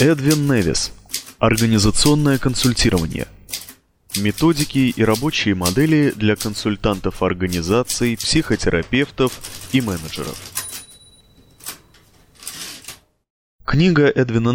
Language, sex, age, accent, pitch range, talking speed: Russian, male, 20-39, native, 100-130 Hz, 65 wpm